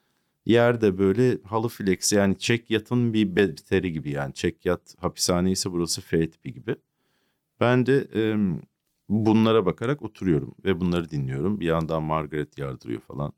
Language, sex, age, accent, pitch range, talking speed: Turkish, male, 50-69, native, 85-125 Hz, 145 wpm